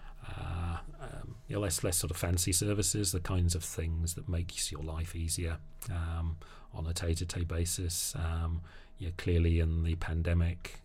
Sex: male